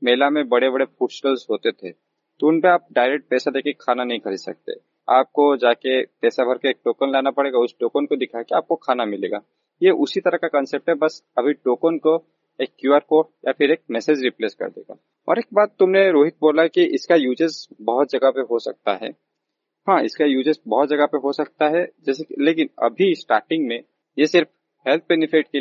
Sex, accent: male, native